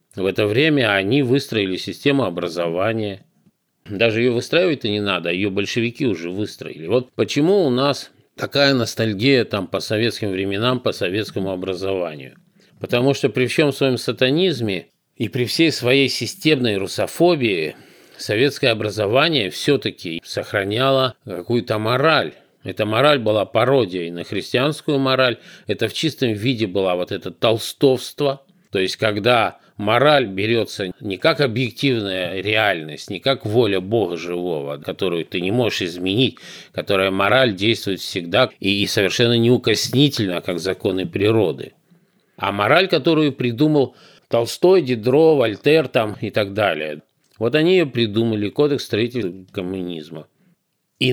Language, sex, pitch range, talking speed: Russian, male, 100-135 Hz, 130 wpm